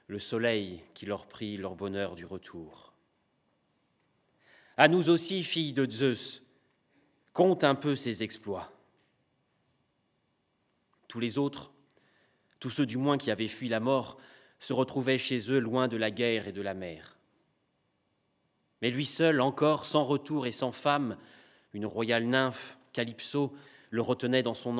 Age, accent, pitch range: 30-49, French, 110-130 Hz